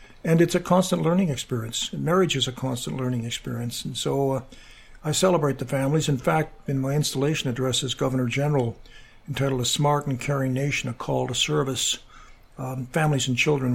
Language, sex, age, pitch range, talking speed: English, male, 60-79, 125-140 Hz, 185 wpm